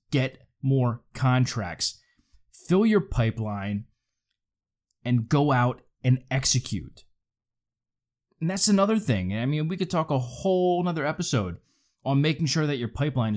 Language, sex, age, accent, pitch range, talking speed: English, male, 20-39, American, 110-150 Hz, 135 wpm